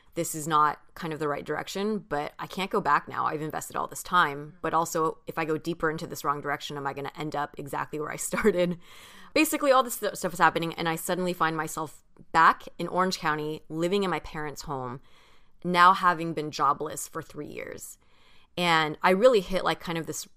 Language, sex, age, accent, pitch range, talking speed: English, female, 20-39, American, 150-180 Hz, 220 wpm